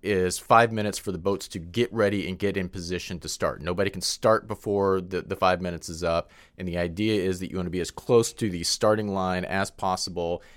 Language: English